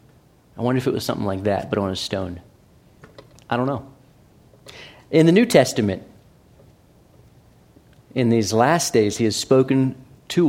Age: 30-49